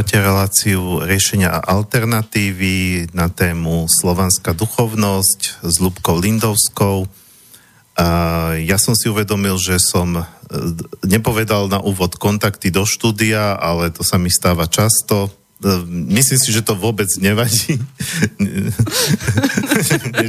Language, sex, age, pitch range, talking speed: Slovak, male, 40-59, 90-110 Hz, 105 wpm